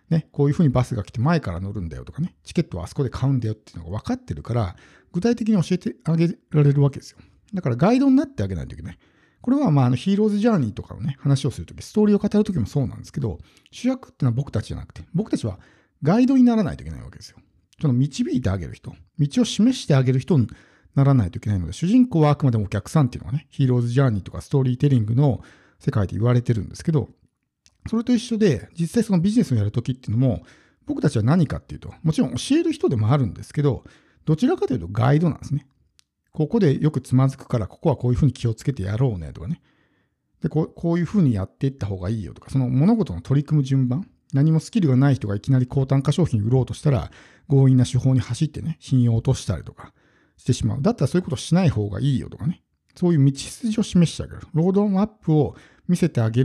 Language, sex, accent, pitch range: Japanese, male, native, 120-170 Hz